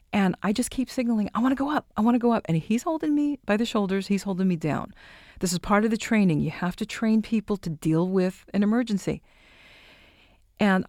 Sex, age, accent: female, 50-69, American